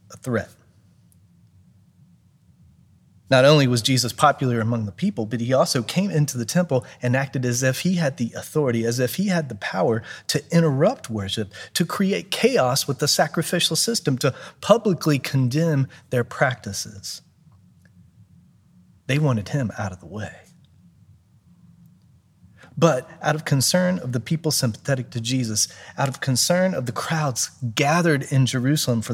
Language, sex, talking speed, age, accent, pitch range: English, male, 150 wpm, 30-49, American, 110-150 Hz